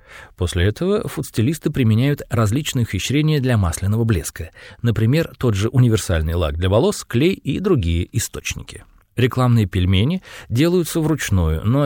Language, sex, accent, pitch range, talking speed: Russian, male, native, 95-140 Hz, 125 wpm